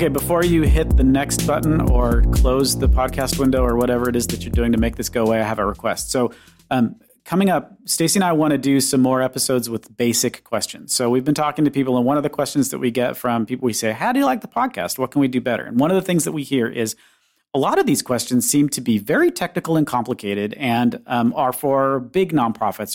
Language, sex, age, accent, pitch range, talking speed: English, male, 40-59, American, 115-145 Hz, 260 wpm